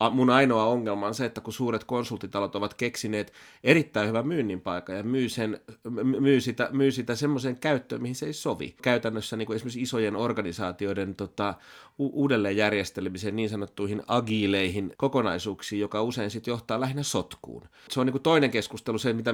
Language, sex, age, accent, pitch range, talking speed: Finnish, male, 30-49, native, 100-130 Hz, 170 wpm